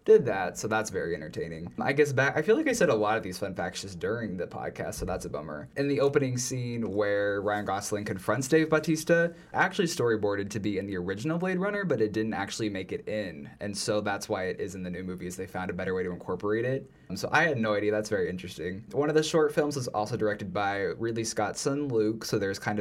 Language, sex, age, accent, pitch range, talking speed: English, male, 20-39, American, 105-135 Hz, 255 wpm